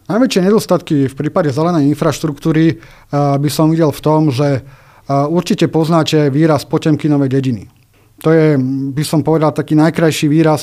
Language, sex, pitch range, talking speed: Slovak, male, 145-165 Hz, 145 wpm